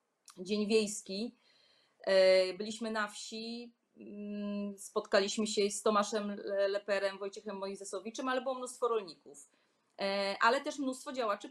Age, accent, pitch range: 30-49, native, 200-230 Hz